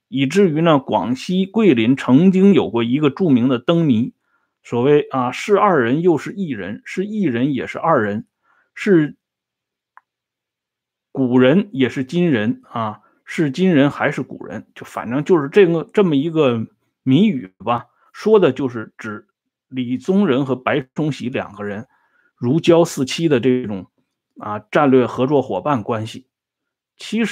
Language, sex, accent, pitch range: Swedish, male, Chinese, 125-190 Hz